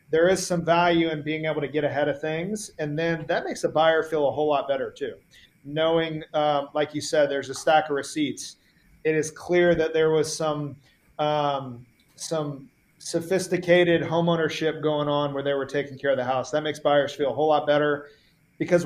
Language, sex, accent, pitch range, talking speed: English, male, American, 145-165 Hz, 205 wpm